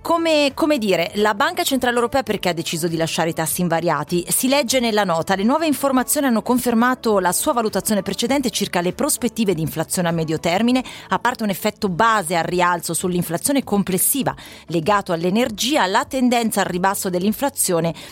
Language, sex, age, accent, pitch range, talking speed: Italian, female, 30-49, native, 175-240 Hz, 170 wpm